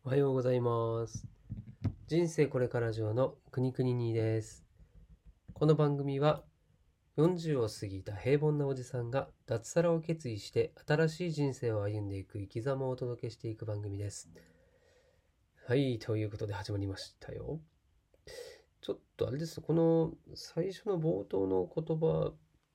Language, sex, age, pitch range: Japanese, male, 30-49, 110-155 Hz